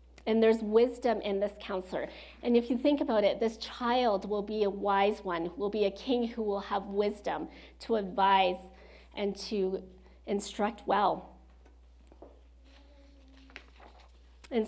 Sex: female